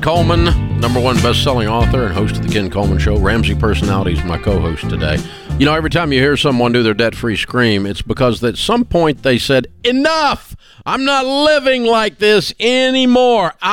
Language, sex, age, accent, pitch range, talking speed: English, male, 50-69, American, 105-145 Hz, 185 wpm